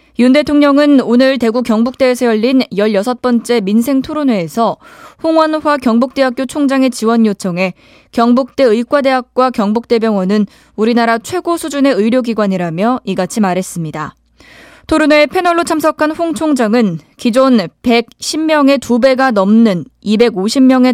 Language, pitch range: Korean, 210-275 Hz